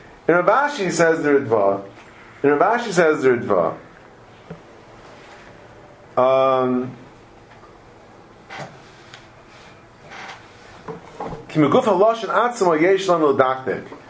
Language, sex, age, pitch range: English, male, 50-69, 120-170 Hz